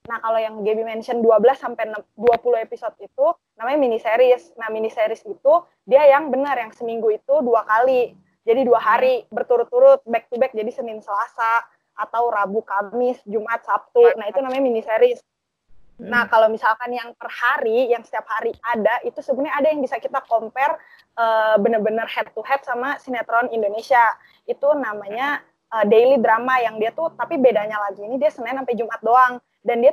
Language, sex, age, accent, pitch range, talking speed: Indonesian, female, 20-39, native, 225-270 Hz, 170 wpm